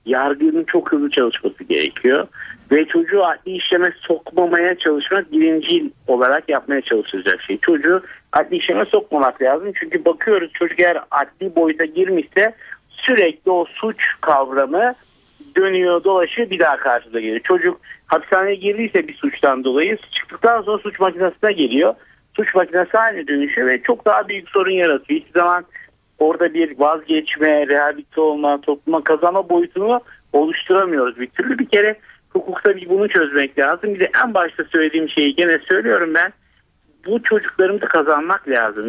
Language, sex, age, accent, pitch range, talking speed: Turkish, male, 60-79, native, 155-220 Hz, 145 wpm